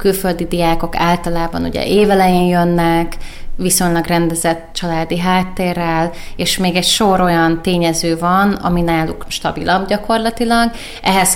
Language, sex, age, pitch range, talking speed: Hungarian, female, 20-39, 170-190 Hz, 115 wpm